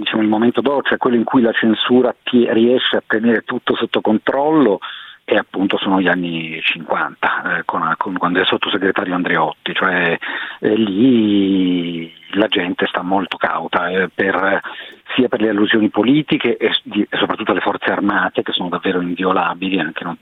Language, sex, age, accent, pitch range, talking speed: Italian, male, 40-59, native, 90-110 Hz, 150 wpm